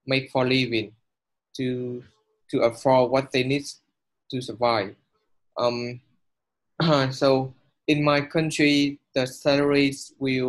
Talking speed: 115 wpm